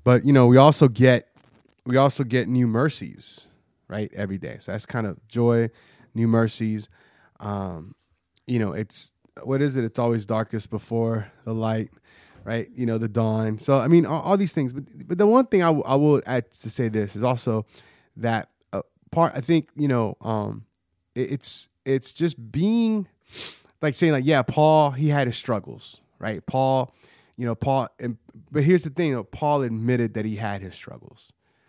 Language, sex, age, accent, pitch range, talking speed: English, male, 20-39, American, 110-135 Hz, 185 wpm